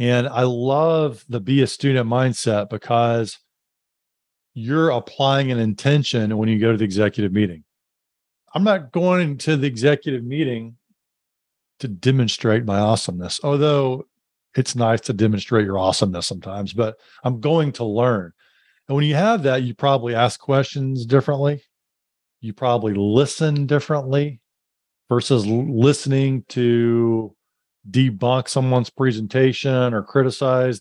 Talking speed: 130 wpm